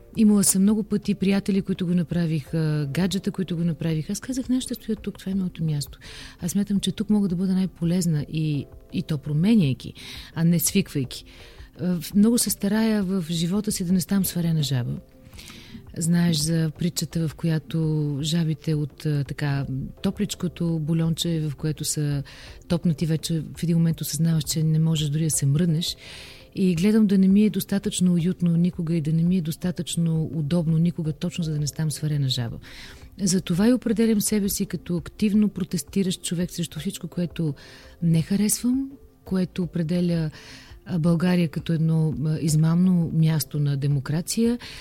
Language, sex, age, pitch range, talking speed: Bulgarian, female, 40-59, 160-195 Hz, 160 wpm